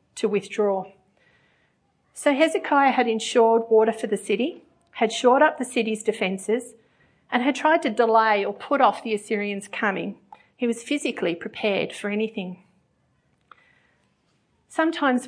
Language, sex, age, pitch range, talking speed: English, female, 40-59, 205-250 Hz, 135 wpm